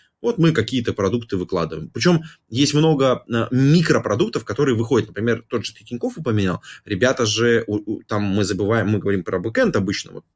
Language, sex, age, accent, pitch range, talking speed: Russian, male, 20-39, native, 100-120 Hz, 160 wpm